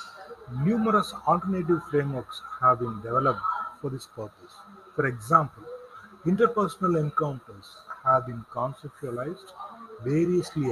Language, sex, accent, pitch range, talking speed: Tamil, male, native, 145-200 Hz, 95 wpm